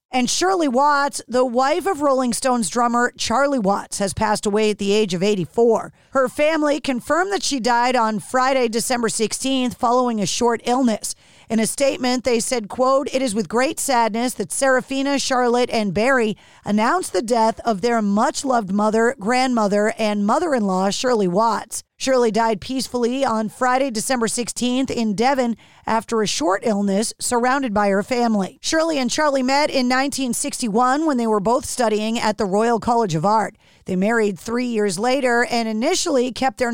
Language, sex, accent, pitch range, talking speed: English, female, American, 215-260 Hz, 175 wpm